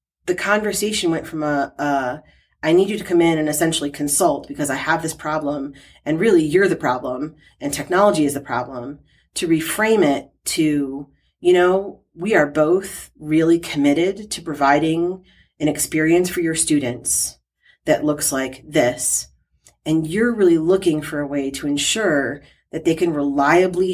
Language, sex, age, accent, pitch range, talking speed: English, female, 30-49, American, 145-180 Hz, 165 wpm